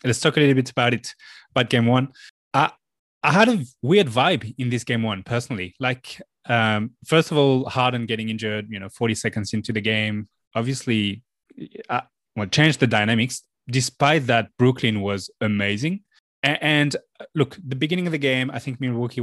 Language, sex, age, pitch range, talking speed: English, male, 20-39, 110-135 Hz, 180 wpm